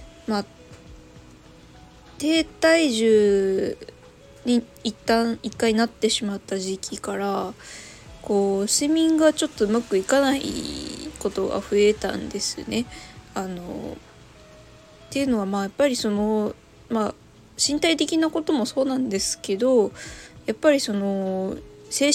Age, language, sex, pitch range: 20-39, Japanese, female, 200-255 Hz